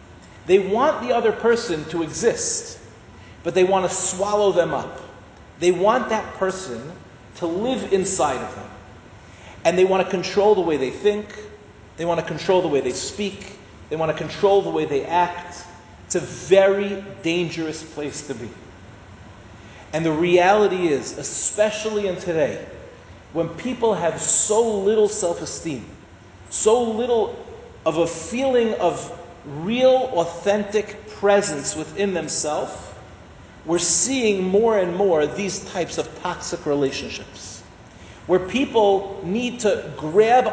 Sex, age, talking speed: male, 40-59, 140 wpm